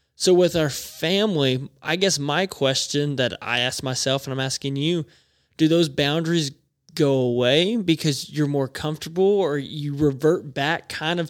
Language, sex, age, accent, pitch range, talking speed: English, male, 20-39, American, 135-165 Hz, 165 wpm